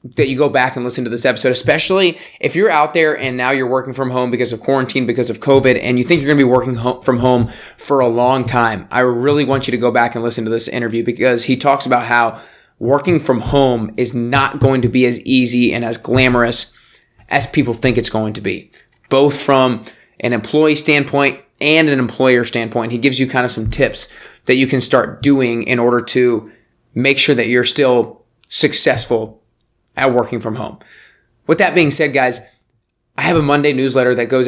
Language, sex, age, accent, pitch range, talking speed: English, male, 20-39, American, 120-145 Hz, 215 wpm